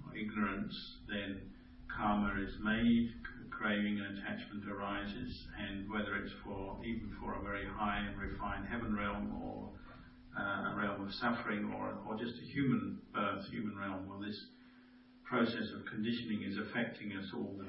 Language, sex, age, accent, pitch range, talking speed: English, male, 50-69, British, 100-115 Hz, 155 wpm